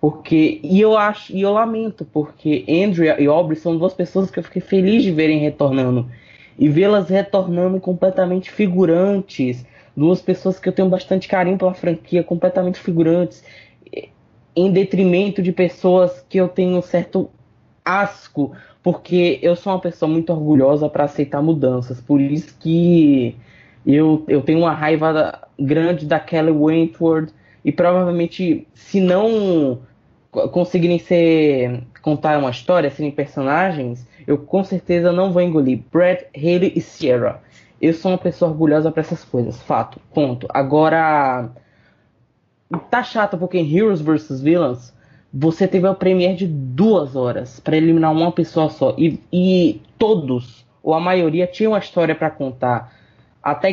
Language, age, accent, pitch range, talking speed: Portuguese, 20-39, Brazilian, 145-185 Hz, 150 wpm